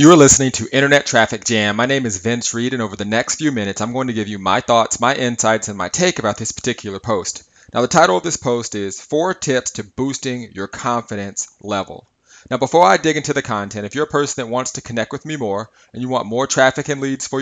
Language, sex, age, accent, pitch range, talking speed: English, male, 30-49, American, 110-135 Hz, 255 wpm